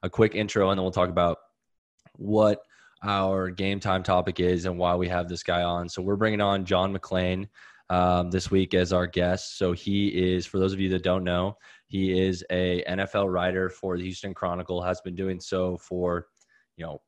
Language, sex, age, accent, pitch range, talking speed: English, male, 20-39, American, 90-100 Hz, 205 wpm